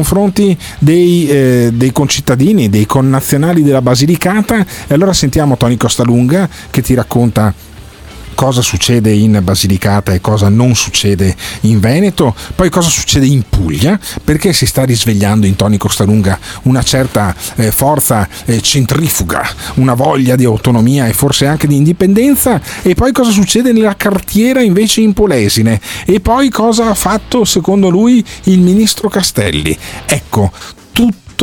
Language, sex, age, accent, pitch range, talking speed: Italian, male, 40-59, native, 105-175 Hz, 140 wpm